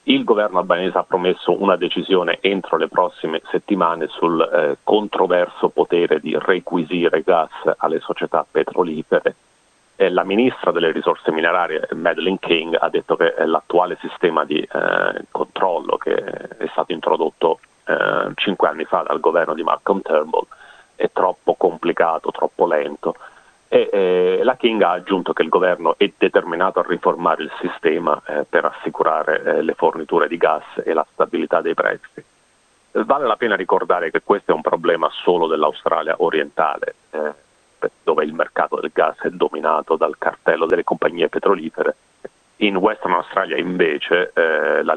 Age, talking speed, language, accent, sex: 40-59, 150 wpm, Italian, native, male